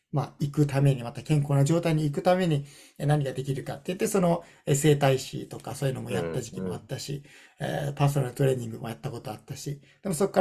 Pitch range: 120-145 Hz